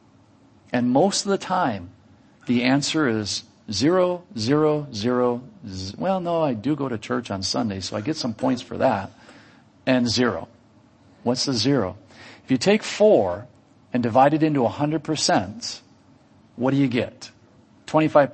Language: English